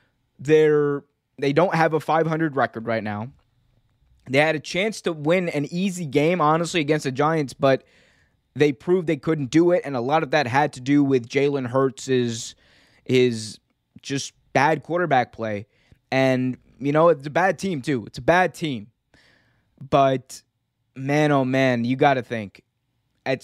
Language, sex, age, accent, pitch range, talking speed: English, male, 20-39, American, 130-175 Hz, 170 wpm